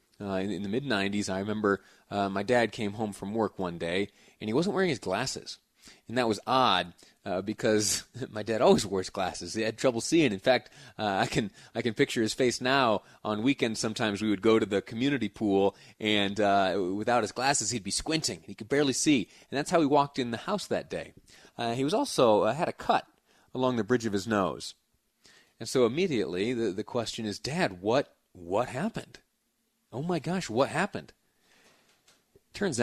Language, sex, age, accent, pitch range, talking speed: English, male, 30-49, American, 100-125 Hz, 200 wpm